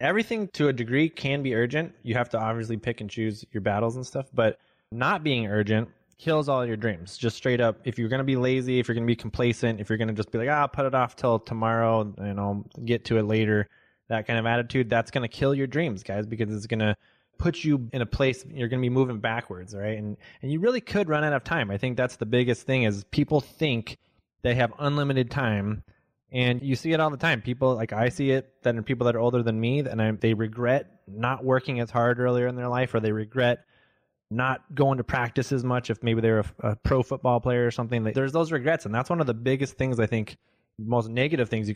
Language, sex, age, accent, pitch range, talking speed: English, male, 20-39, American, 110-130 Hz, 255 wpm